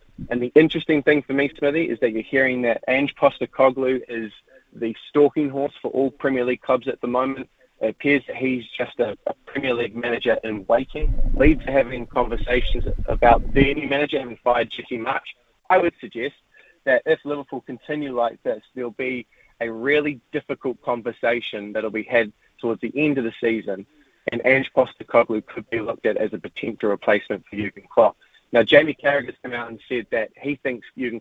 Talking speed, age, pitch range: 190 wpm, 20-39, 110-135 Hz